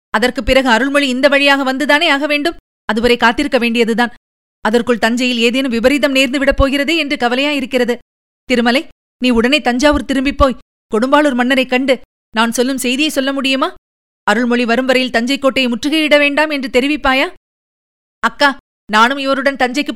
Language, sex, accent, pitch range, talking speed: Tamil, female, native, 245-290 Hz, 130 wpm